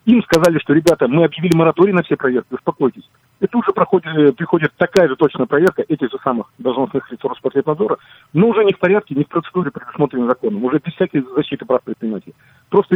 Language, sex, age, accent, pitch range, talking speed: Russian, male, 40-59, native, 130-170 Hz, 200 wpm